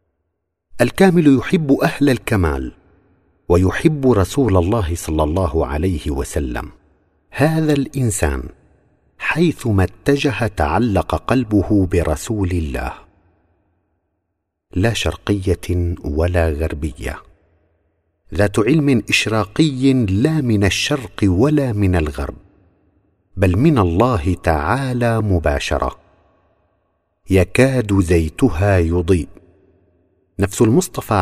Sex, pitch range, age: male, 85-120 Hz, 50-69